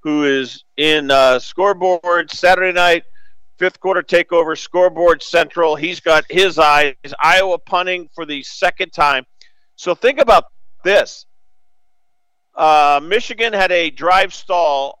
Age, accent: 50-69, American